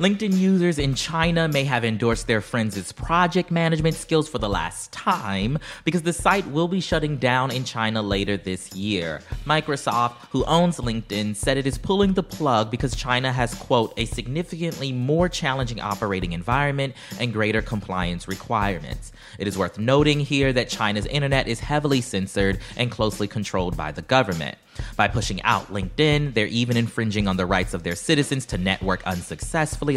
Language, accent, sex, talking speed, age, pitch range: English, American, male, 170 wpm, 30-49, 100-140 Hz